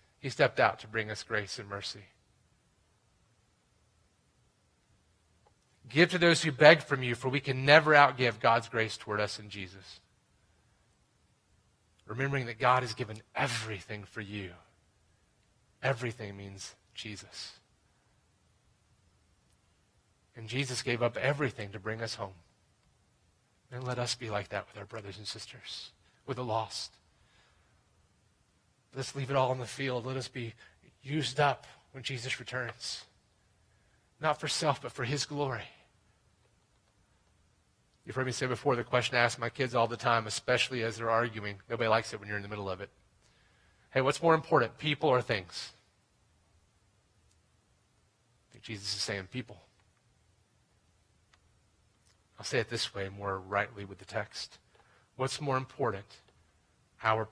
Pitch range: 100-125 Hz